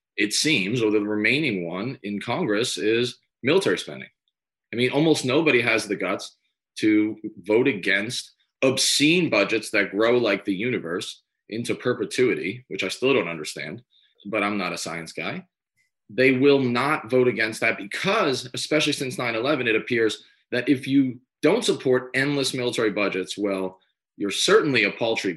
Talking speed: 155 wpm